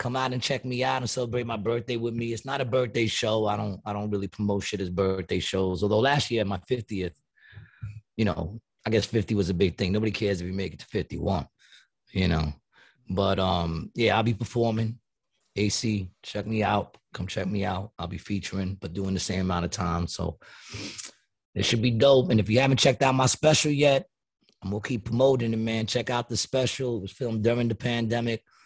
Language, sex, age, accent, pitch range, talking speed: English, male, 30-49, American, 100-120 Hz, 220 wpm